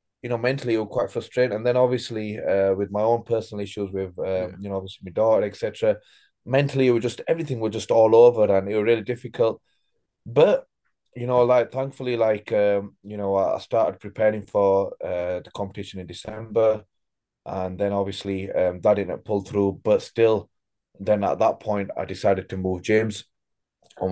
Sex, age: male, 20-39